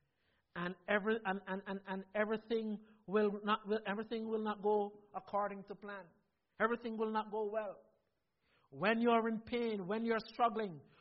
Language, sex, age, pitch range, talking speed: English, male, 60-79, 180-230 Hz, 165 wpm